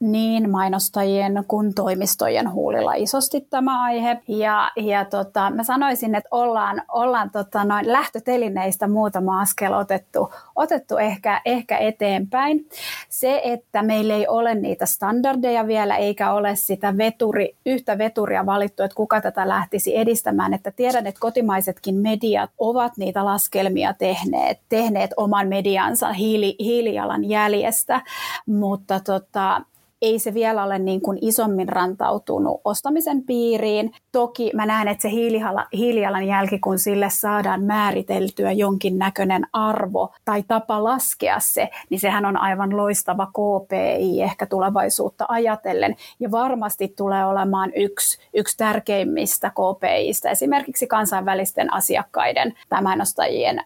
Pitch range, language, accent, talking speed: 195-230 Hz, Finnish, native, 120 wpm